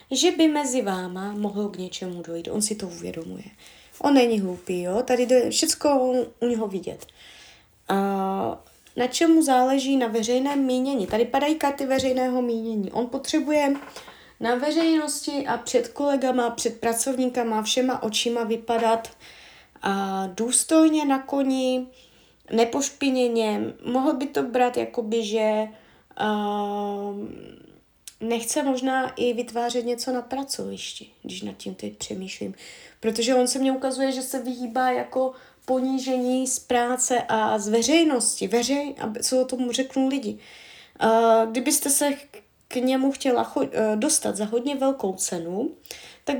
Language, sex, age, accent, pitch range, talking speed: Czech, female, 20-39, native, 225-270 Hz, 130 wpm